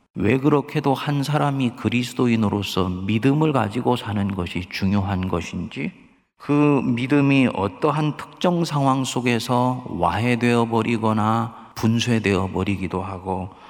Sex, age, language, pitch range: male, 40-59, Korean, 95-125 Hz